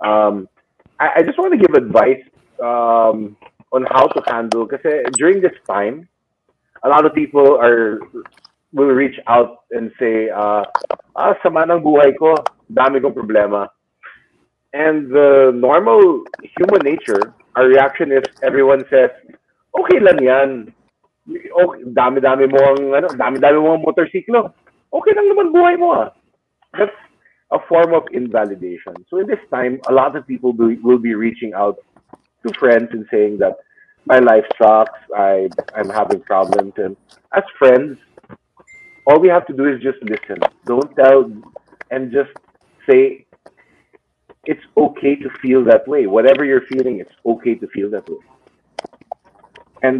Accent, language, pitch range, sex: Filipino, English, 120-185 Hz, male